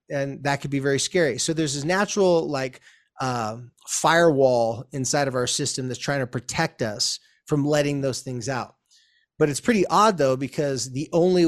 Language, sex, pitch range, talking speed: English, male, 125-165 Hz, 185 wpm